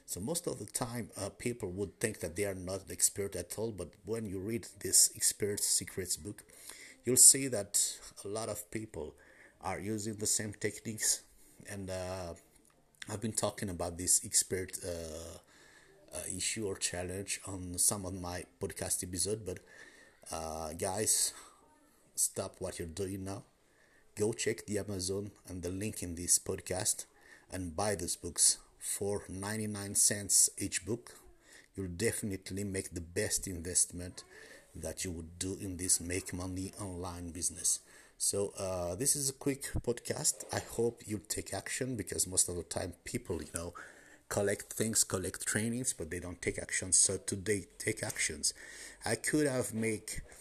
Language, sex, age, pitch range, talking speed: English, male, 50-69, 90-105 Hz, 165 wpm